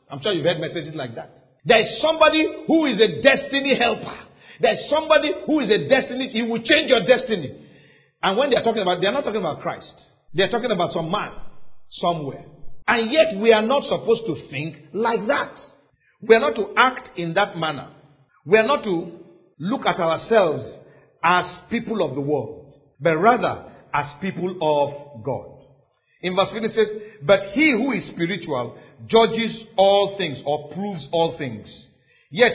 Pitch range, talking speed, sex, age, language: 160-240 Hz, 185 wpm, male, 50-69, English